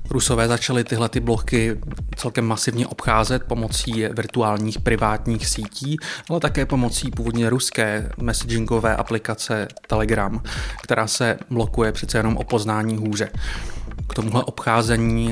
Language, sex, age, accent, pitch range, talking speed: Czech, male, 20-39, native, 110-120 Hz, 120 wpm